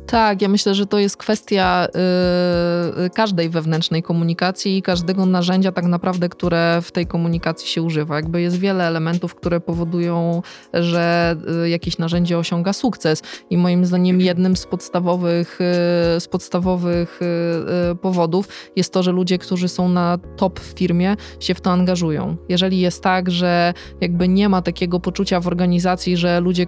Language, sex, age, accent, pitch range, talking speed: Polish, female, 20-39, native, 175-190 Hz, 150 wpm